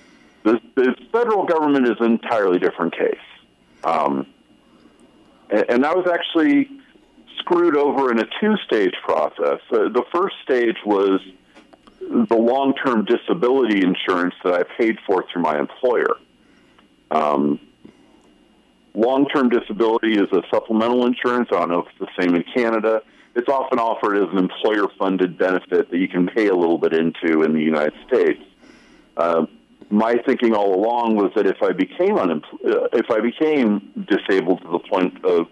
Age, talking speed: 50-69, 155 wpm